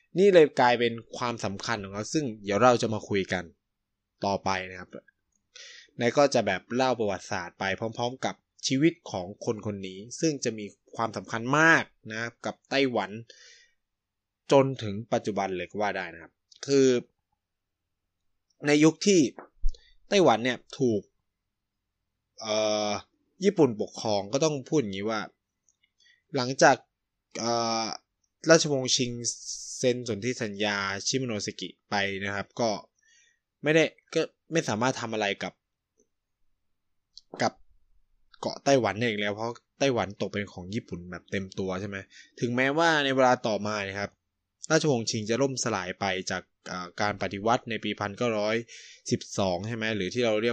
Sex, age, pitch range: male, 20-39, 100-125 Hz